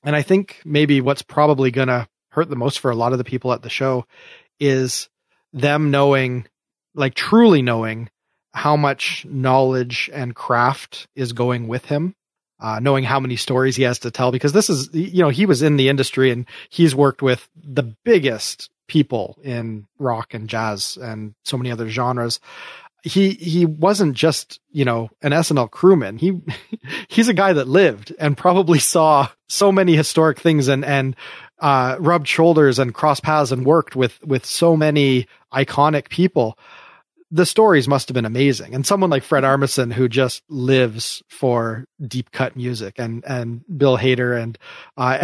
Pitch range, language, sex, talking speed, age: 125-155 Hz, English, male, 175 wpm, 30-49